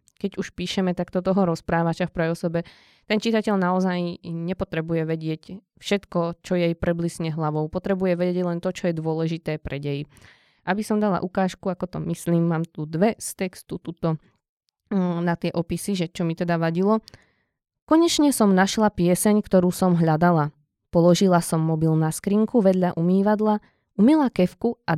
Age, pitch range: 20-39, 165-195 Hz